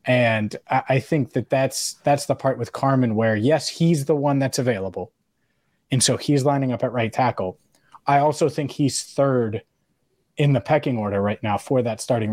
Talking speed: 190 wpm